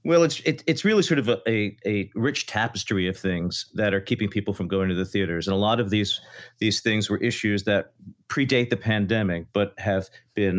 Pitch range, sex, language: 95-130 Hz, male, English